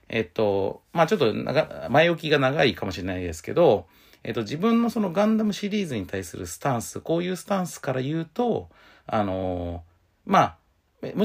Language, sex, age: Japanese, male, 40-59